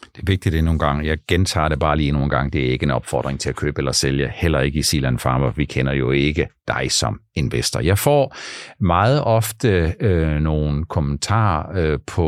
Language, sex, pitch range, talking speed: Danish, male, 85-110 Hz, 220 wpm